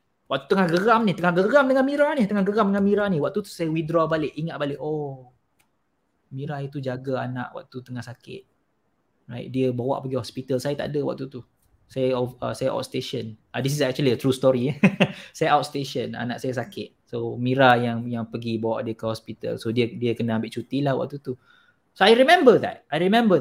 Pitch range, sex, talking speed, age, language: 130-180 Hz, male, 210 wpm, 20-39, Malay